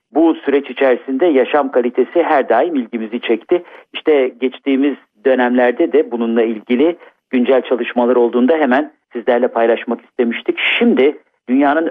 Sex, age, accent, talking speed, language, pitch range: male, 50-69, native, 120 wpm, Turkish, 120-155 Hz